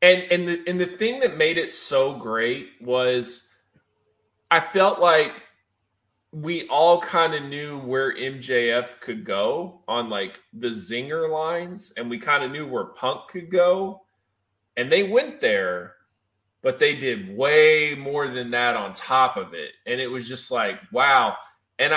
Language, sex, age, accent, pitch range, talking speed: English, male, 20-39, American, 120-170 Hz, 170 wpm